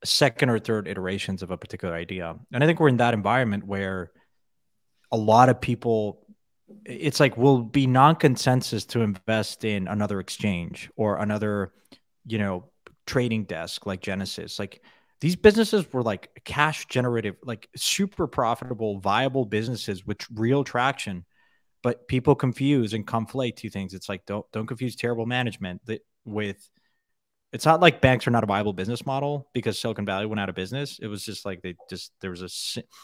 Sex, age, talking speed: male, 20-39, 175 wpm